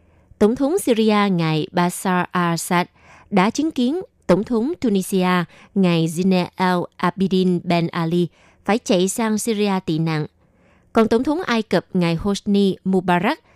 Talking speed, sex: 140 wpm, female